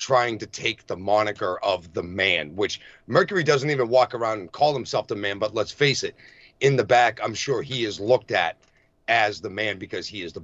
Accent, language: American, English